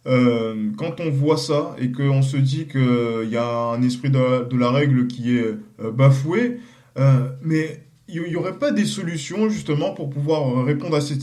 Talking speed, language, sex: 160 wpm, French, male